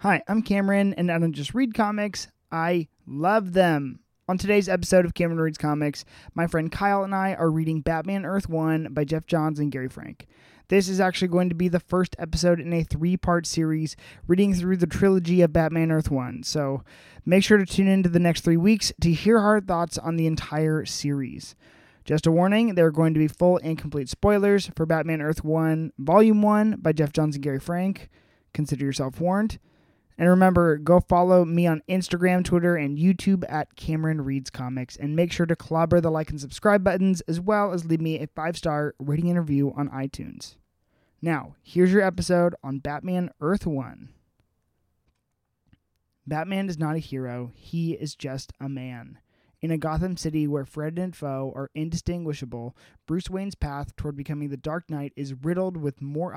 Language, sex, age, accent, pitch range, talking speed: English, male, 20-39, American, 145-180 Hz, 190 wpm